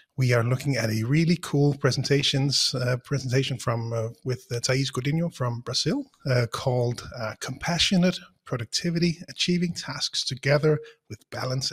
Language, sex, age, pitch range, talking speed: English, male, 30-49, 125-140 Hz, 145 wpm